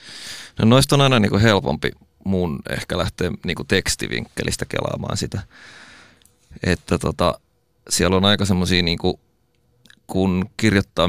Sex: male